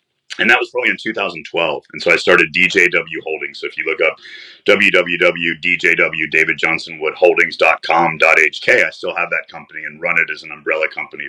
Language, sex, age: English, male, 30-49